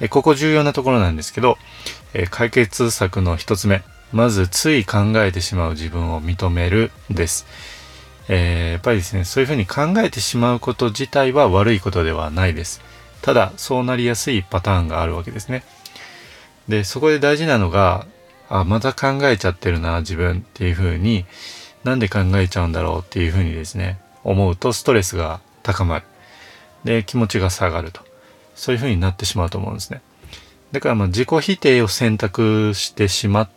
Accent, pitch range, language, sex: native, 90-120 Hz, Japanese, male